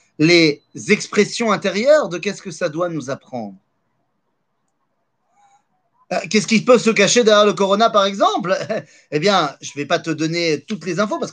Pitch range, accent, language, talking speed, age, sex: 160-230 Hz, French, French, 175 wpm, 30-49, male